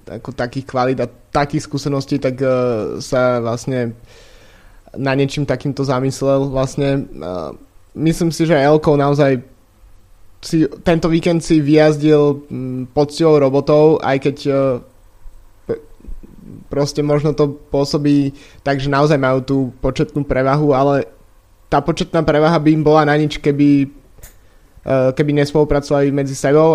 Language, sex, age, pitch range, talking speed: Slovak, male, 20-39, 135-150 Hz, 130 wpm